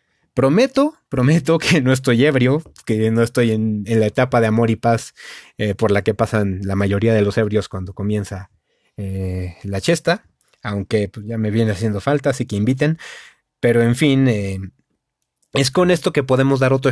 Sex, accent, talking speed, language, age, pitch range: male, Mexican, 185 wpm, Spanish, 30-49, 110-150 Hz